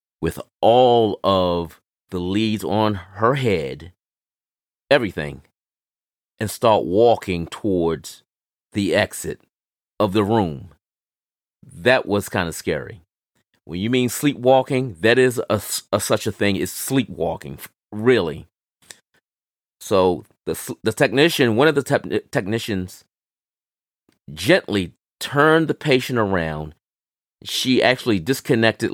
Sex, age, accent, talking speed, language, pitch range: male, 30-49, American, 110 wpm, English, 90-125 Hz